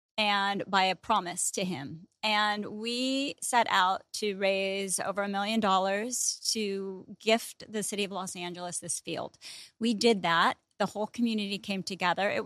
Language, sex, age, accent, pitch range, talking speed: English, female, 30-49, American, 190-220 Hz, 165 wpm